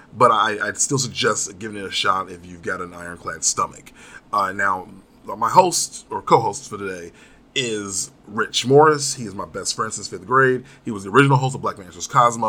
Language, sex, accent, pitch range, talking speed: English, male, American, 95-130 Hz, 195 wpm